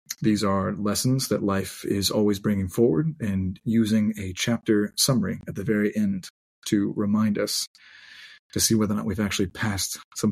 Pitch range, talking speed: 100-115 Hz, 175 wpm